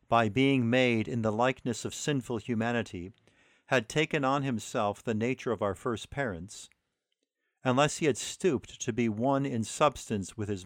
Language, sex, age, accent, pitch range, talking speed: English, male, 50-69, American, 105-130 Hz, 170 wpm